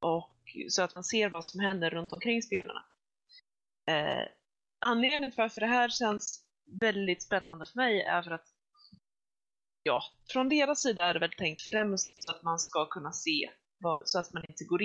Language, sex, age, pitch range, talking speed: Swedish, female, 20-39, 165-235 Hz, 185 wpm